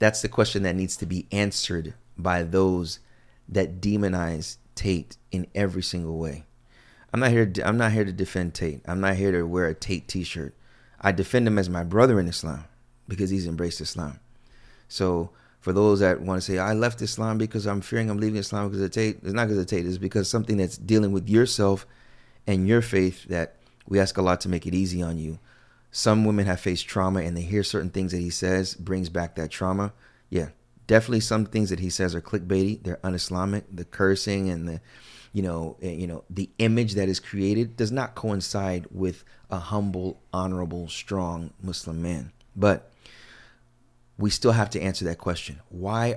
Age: 30-49